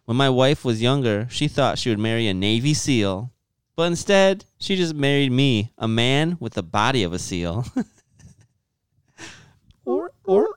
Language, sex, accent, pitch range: English, male, American, 110-145 Hz